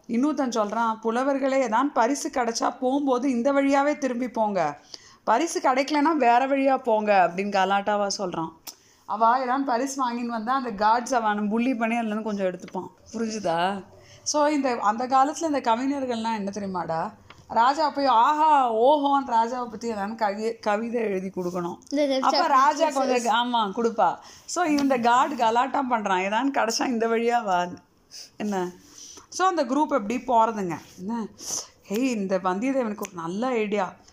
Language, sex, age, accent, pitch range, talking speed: Tamil, female, 30-49, native, 205-270 Hz, 135 wpm